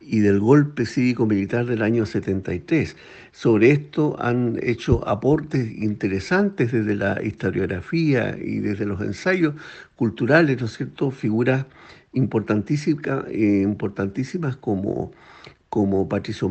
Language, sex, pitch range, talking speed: Spanish, male, 105-135 Hz, 115 wpm